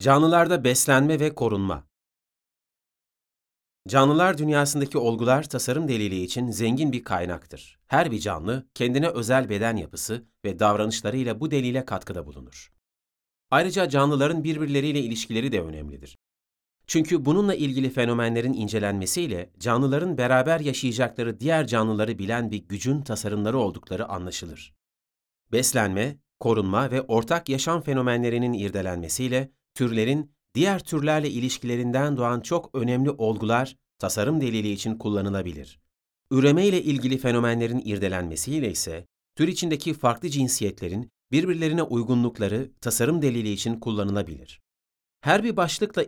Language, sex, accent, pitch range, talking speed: Turkish, male, native, 100-140 Hz, 110 wpm